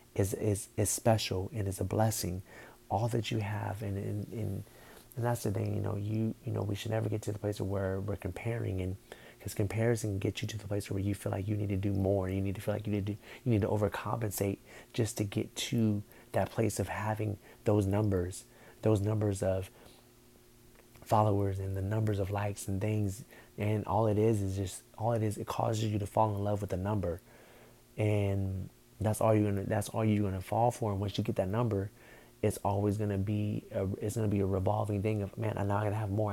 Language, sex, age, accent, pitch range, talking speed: English, male, 30-49, American, 100-110 Hz, 235 wpm